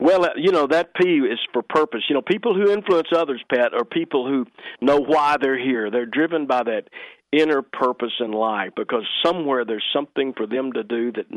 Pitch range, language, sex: 120-170 Hz, English, male